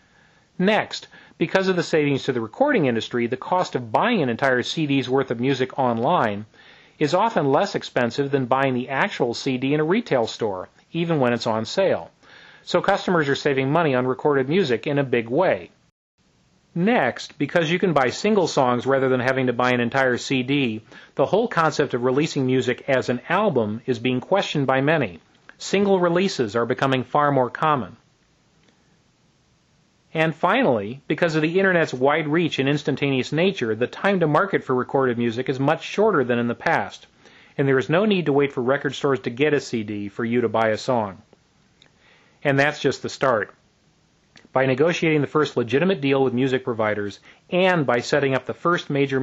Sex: male